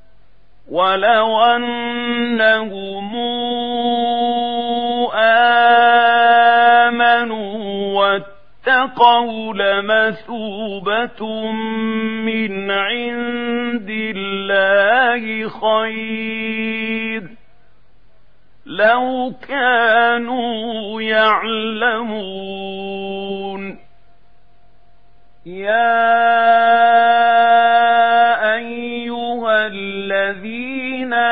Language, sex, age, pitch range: Arabic, male, 40-59, 195-235 Hz